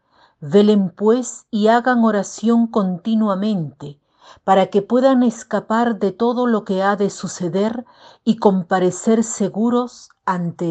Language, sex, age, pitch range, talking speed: Spanish, female, 50-69, 180-240 Hz, 120 wpm